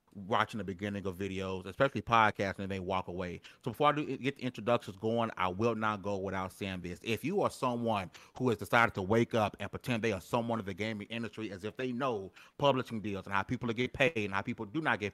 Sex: male